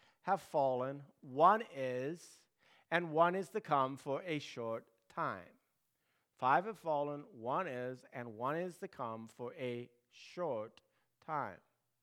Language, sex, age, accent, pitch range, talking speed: English, male, 50-69, American, 130-170 Hz, 135 wpm